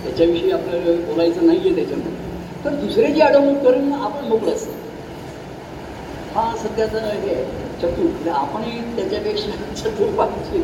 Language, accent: Marathi, native